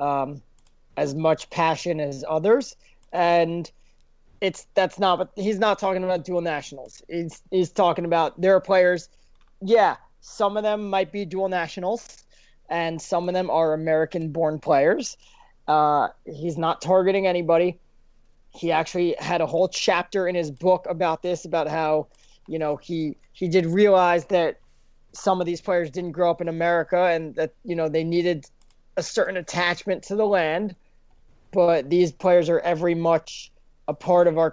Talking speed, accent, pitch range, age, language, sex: 165 wpm, American, 155-185 Hz, 30-49, English, male